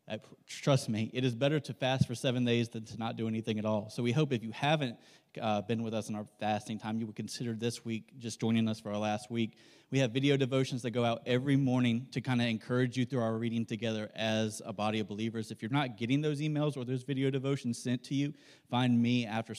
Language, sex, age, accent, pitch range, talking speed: English, male, 30-49, American, 110-130 Hz, 250 wpm